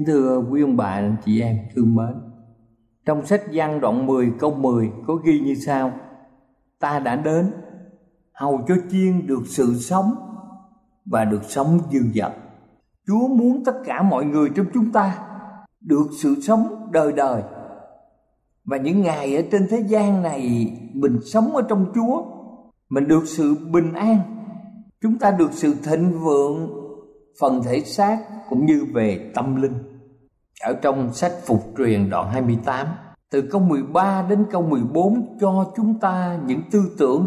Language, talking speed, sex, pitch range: Vietnamese, 160 wpm, male, 135-210 Hz